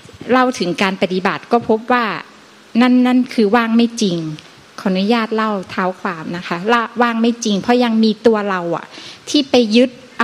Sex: female